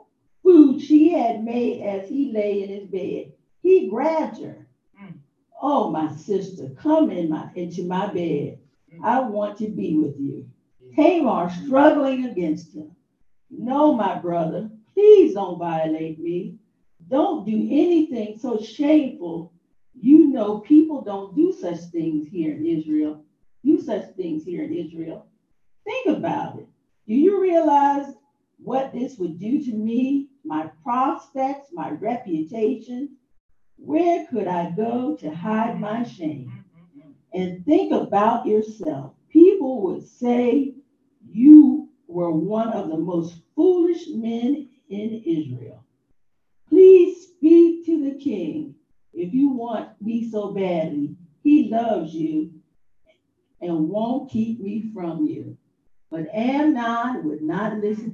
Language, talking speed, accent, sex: English, 125 wpm, American, female